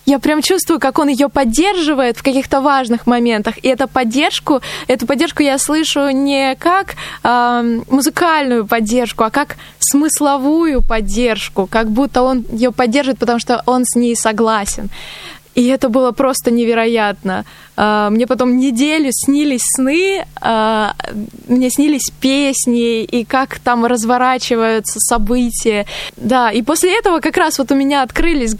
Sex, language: female, Russian